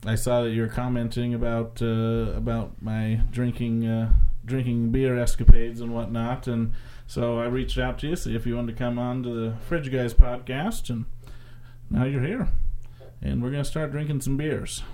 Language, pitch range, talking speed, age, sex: English, 115-135 Hz, 195 wpm, 30-49, male